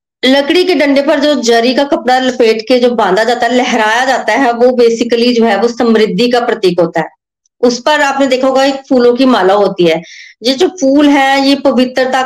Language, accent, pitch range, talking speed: Hindi, native, 210-265 Hz, 210 wpm